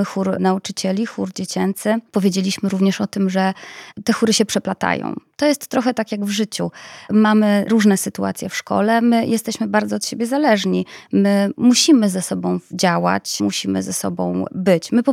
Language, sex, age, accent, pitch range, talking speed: Polish, female, 20-39, native, 190-230 Hz, 165 wpm